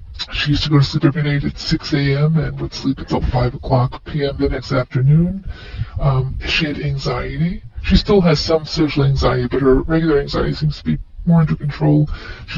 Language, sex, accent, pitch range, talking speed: English, female, American, 130-150 Hz, 200 wpm